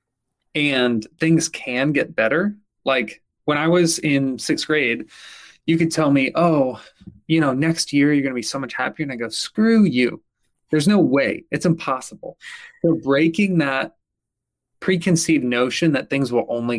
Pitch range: 130-170 Hz